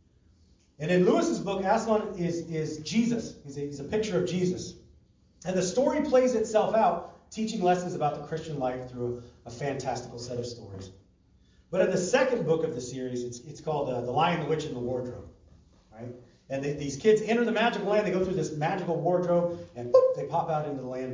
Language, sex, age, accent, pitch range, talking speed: English, male, 30-49, American, 125-190 Hz, 215 wpm